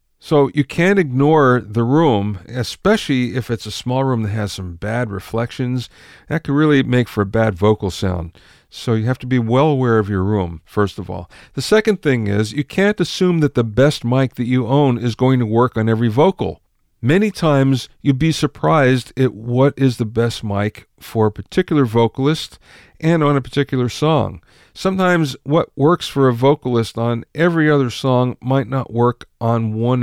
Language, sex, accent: English, male, American